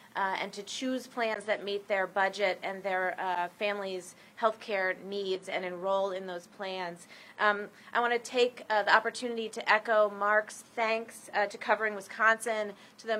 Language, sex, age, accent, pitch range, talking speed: English, female, 30-49, American, 195-220 Hz, 170 wpm